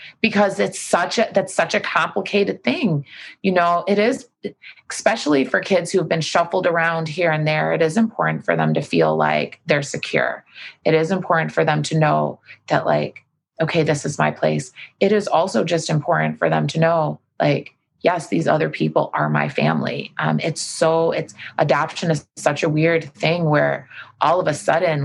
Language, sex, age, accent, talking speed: English, female, 30-49, American, 190 wpm